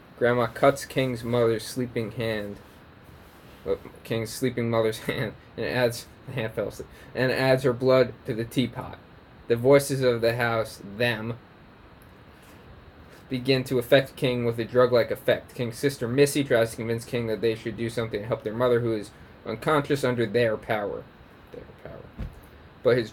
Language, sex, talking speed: English, male, 165 wpm